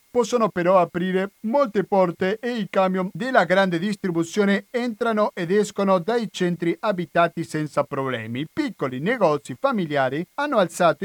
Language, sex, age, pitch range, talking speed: Italian, male, 40-59, 155-210 Hz, 130 wpm